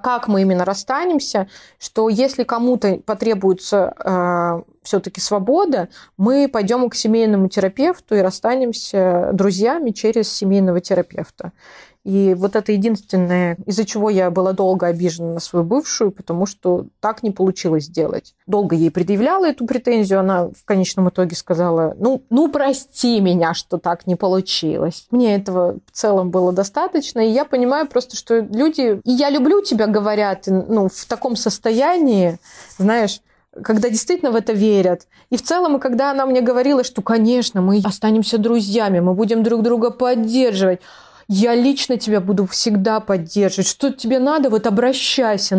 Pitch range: 190-250 Hz